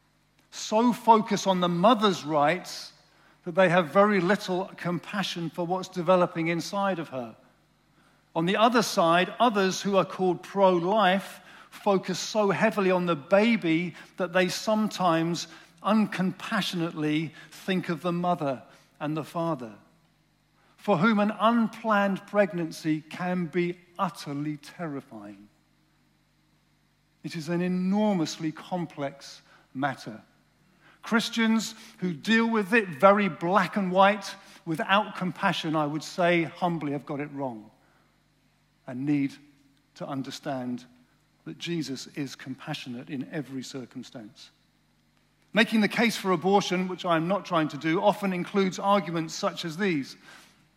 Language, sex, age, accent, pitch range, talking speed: English, male, 50-69, British, 150-200 Hz, 125 wpm